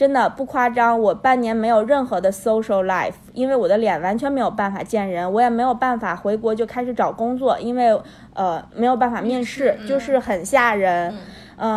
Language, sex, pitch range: Chinese, female, 205-255 Hz